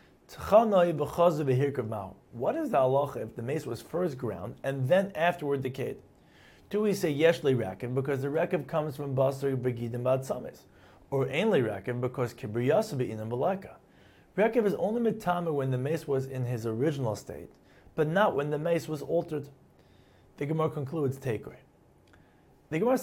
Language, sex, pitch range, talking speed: English, male, 125-165 Hz, 160 wpm